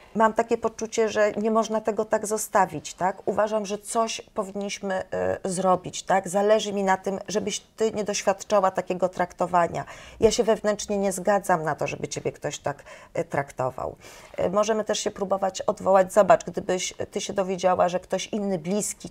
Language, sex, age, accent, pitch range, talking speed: Polish, female, 30-49, native, 180-205 Hz, 165 wpm